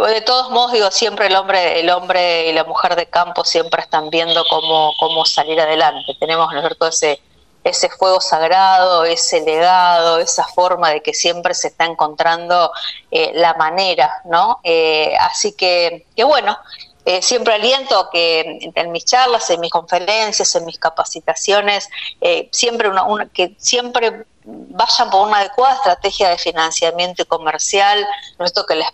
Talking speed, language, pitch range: 160 wpm, Spanish, 165-205 Hz